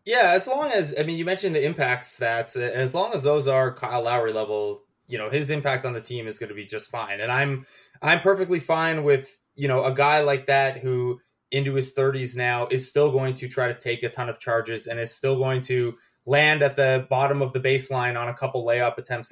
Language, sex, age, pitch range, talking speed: English, male, 20-39, 125-150 Hz, 240 wpm